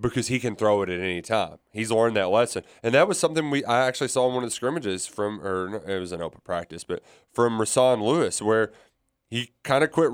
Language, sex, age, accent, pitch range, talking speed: English, male, 20-39, American, 95-120 Hz, 250 wpm